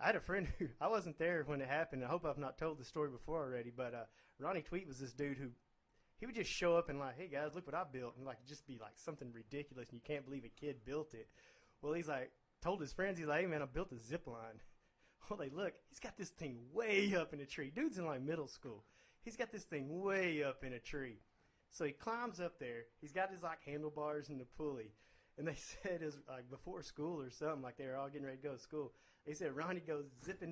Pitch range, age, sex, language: 145-200 Hz, 30-49, male, English